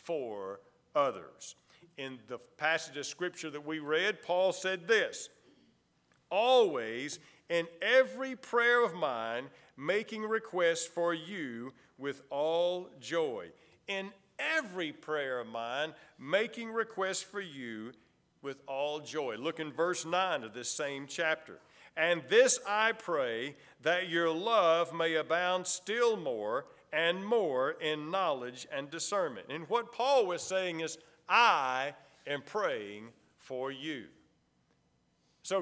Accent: American